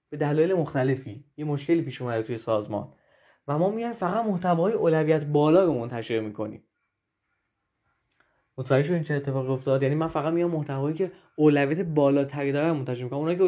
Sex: male